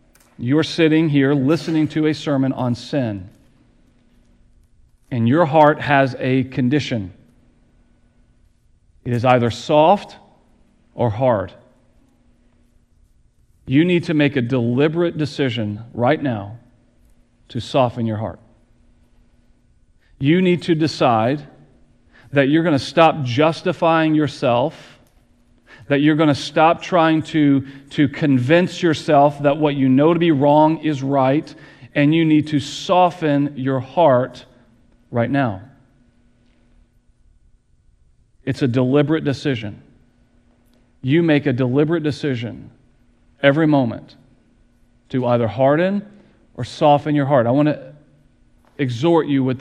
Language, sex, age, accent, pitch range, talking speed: English, male, 40-59, American, 125-150 Hz, 115 wpm